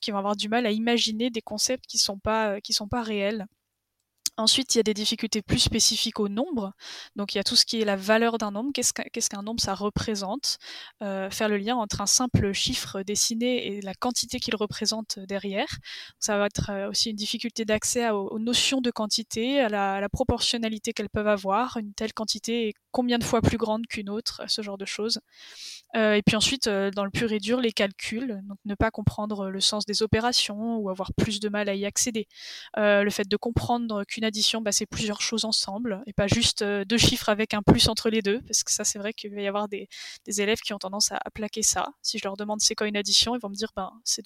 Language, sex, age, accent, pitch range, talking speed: French, female, 10-29, French, 205-230 Hz, 245 wpm